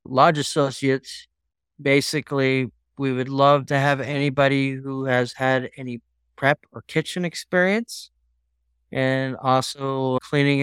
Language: English